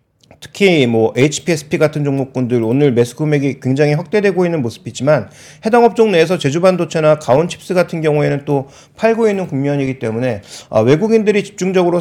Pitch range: 140-195 Hz